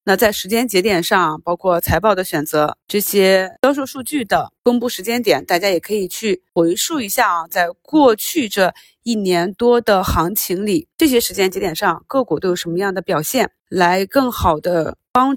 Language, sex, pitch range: Chinese, female, 180-220 Hz